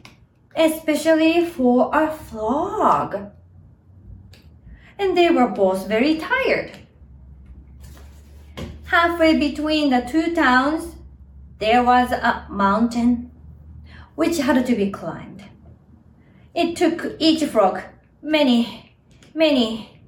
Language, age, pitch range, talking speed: English, 20-39, 210-315 Hz, 90 wpm